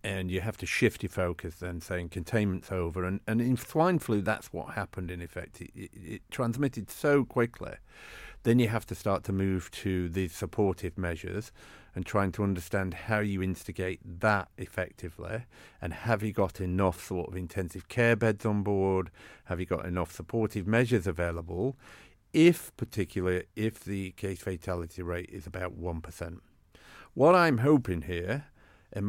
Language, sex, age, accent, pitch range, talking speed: English, male, 50-69, British, 90-105 Hz, 165 wpm